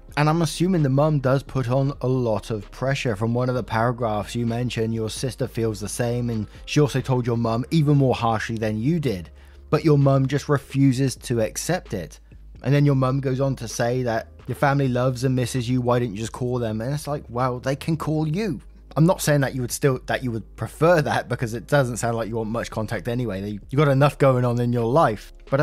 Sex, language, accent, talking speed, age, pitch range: male, English, British, 245 wpm, 10-29, 115-145 Hz